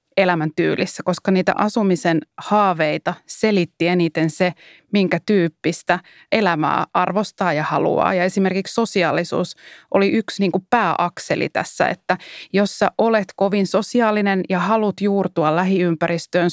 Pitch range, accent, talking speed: 170-195 Hz, native, 115 wpm